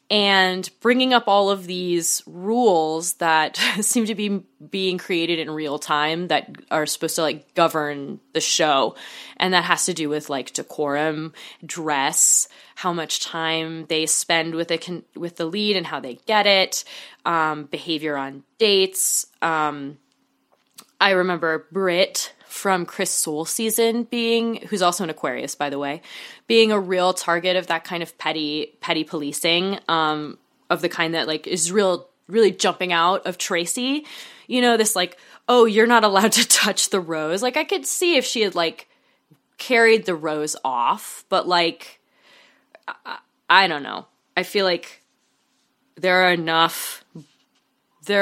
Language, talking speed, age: English, 160 wpm, 20-39